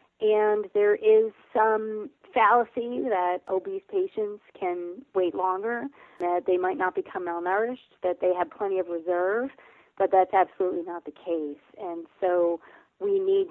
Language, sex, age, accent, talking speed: English, female, 30-49, American, 145 wpm